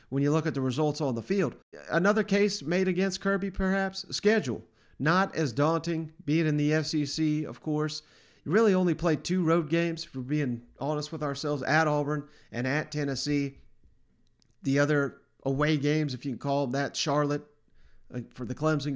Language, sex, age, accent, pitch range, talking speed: English, male, 40-59, American, 130-170 Hz, 175 wpm